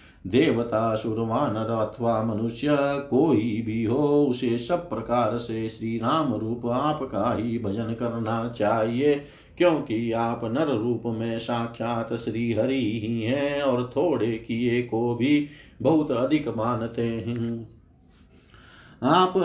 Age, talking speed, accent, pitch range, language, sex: 50-69, 115 wpm, native, 115-145 Hz, Hindi, male